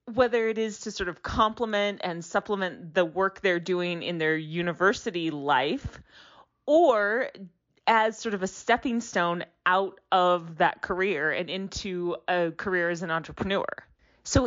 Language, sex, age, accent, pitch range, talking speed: English, female, 30-49, American, 170-210 Hz, 150 wpm